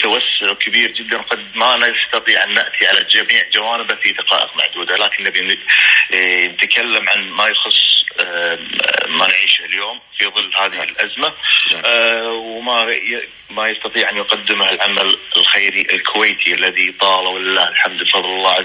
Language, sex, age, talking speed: Arabic, male, 30-49, 130 wpm